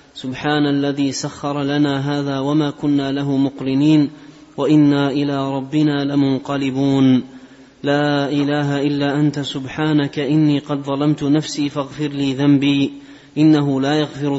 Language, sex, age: Arabic, male, 30-49